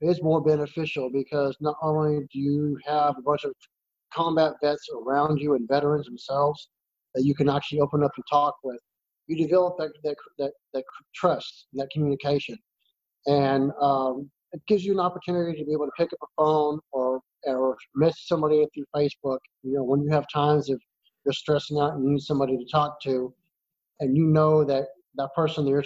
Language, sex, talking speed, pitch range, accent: English, male, 195 wpm, 130-150 Hz, American